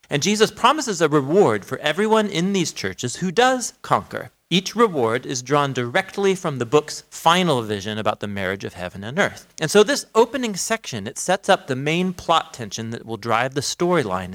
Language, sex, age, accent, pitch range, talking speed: English, male, 40-59, American, 115-175 Hz, 195 wpm